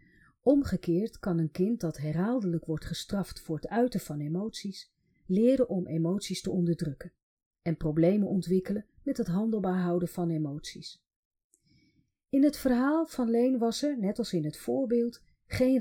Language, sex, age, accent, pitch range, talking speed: Dutch, female, 40-59, Dutch, 165-230 Hz, 150 wpm